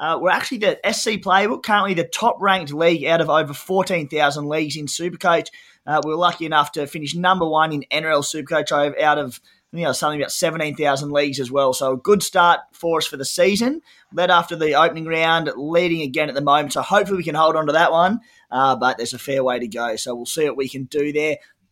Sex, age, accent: male, 20-39, Australian